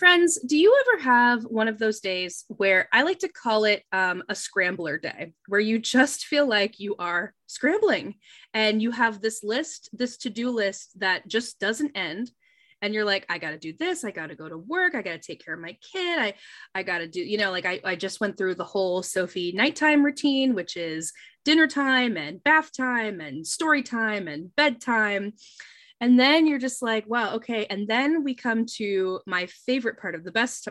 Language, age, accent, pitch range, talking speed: English, 20-39, American, 200-280 Hz, 215 wpm